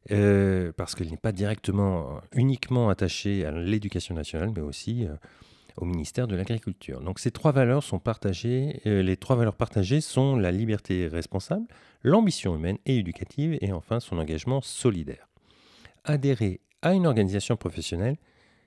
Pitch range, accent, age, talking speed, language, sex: 95-130 Hz, French, 40-59, 150 wpm, French, male